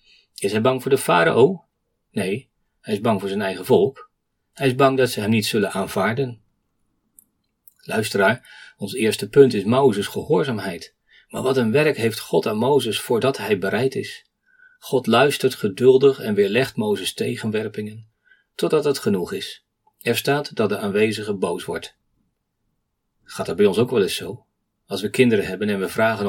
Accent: Dutch